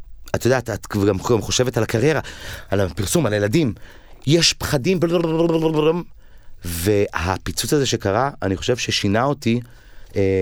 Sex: male